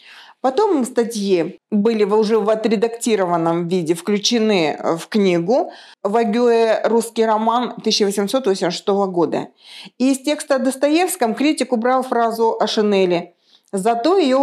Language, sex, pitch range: Russian, female, 195-250 Hz